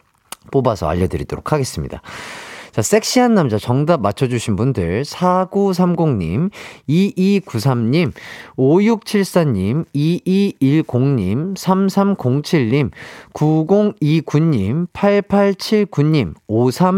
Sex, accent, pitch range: male, native, 110-190 Hz